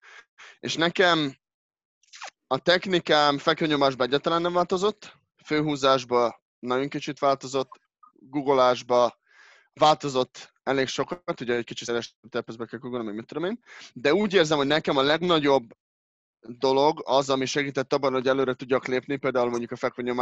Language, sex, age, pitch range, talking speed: Hungarian, male, 20-39, 125-155 Hz, 135 wpm